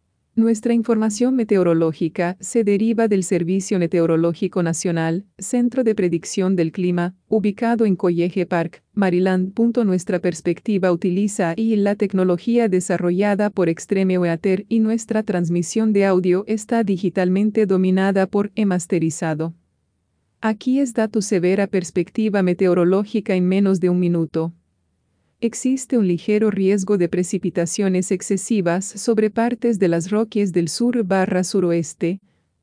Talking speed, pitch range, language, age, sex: 125 wpm, 175-215 Hz, English, 40-59, female